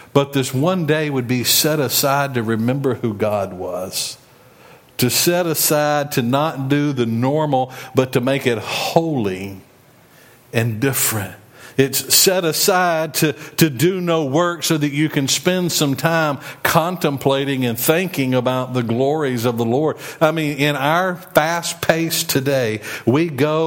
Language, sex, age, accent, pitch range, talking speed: English, male, 50-69, American, 125-155 Hz, 155 wpm